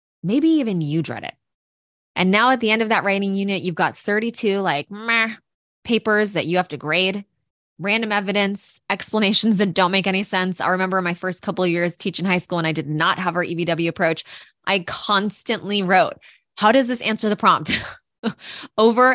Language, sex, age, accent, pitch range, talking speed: English, female, 20-39, American, 170-220 Hz, 190 wpm